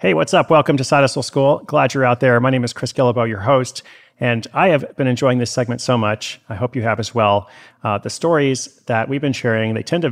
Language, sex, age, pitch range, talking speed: English, male, 30-49, 105-130 Hz, 260 wpm